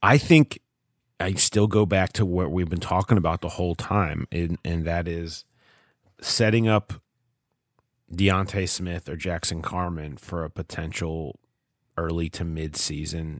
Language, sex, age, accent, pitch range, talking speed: English, male, 30-49, American, 85-110 Hz, 135 wpm